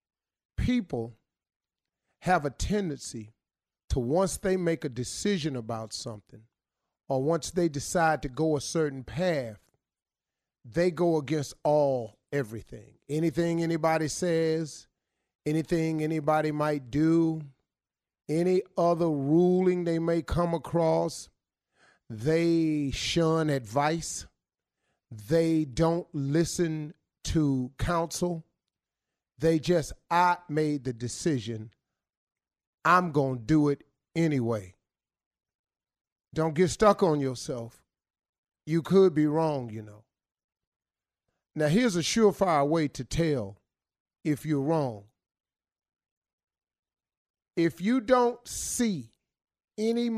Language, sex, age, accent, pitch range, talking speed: English, male, 40-59, American, 130-175 Hz, 105 wpm